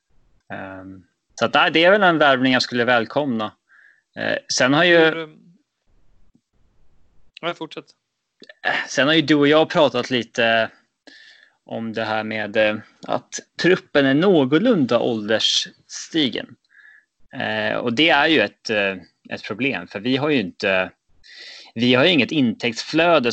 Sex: male